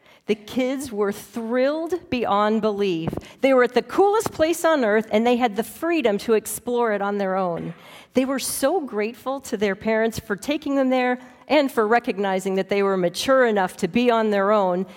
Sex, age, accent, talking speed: female, 40-59, American, 195 wpm